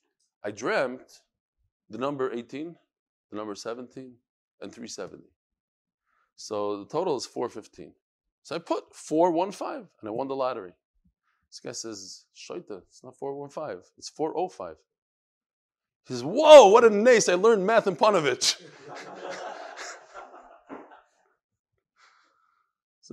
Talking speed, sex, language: 115 wpm, male, English